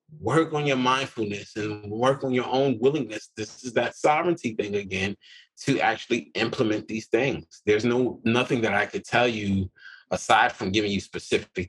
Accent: American